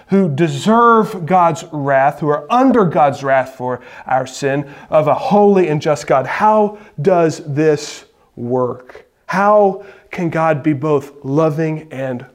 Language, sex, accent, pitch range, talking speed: English, male, American, 125-160 Hz, 140 wpm